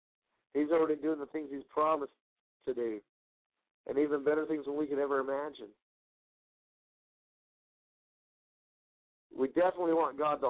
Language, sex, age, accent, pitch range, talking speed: English, male, 50-69, American, 135-165 Hz, 130 wpm